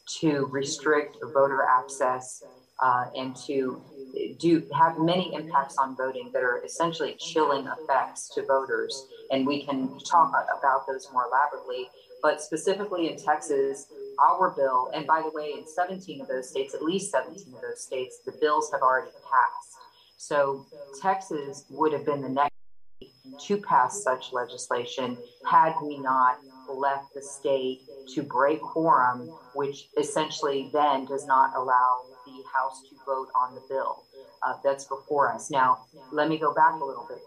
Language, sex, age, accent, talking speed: English, female, 40-59, American, 160 wpm